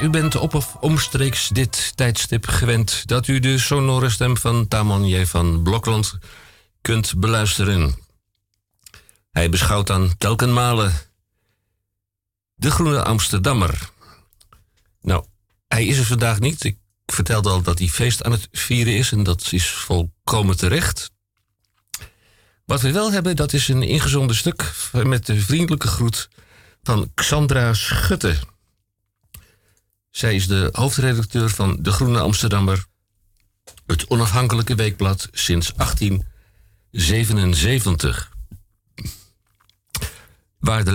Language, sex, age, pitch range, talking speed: Dutch, male, 50-69, 95-120 Hz, 115 wpm